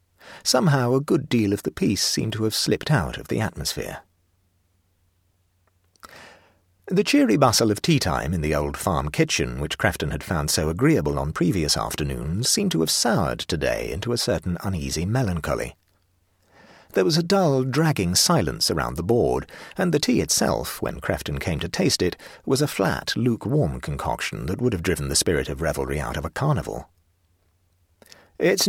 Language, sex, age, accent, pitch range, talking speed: English, male, 40-59, British, 80-125 Hz, 165 wpm